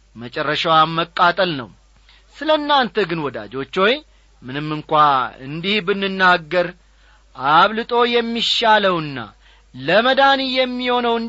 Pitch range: 150-230 Hz